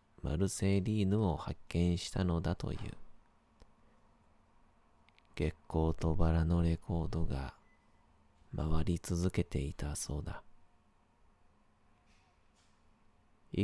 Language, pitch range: Japanese, 80-100 Hz